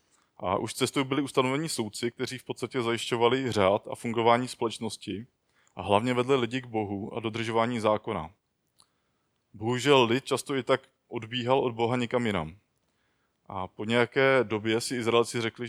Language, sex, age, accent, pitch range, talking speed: Czech, male, 20-39, native, 110-125 Hz, 155 wpm